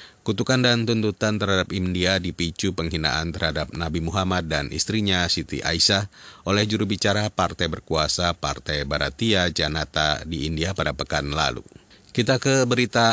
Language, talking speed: Indonesian, 135 wpm